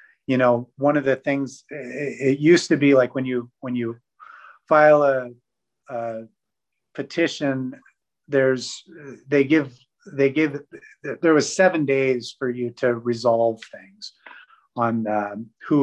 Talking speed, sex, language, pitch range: 135 wpm, male, English, 115-140 Hz